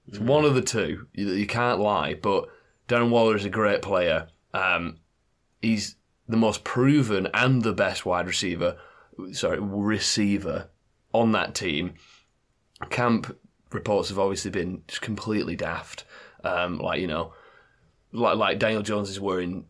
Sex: male